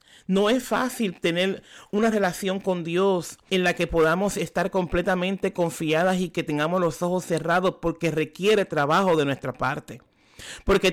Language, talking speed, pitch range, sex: Spanish, 155 wpm, 155-190 Hz, male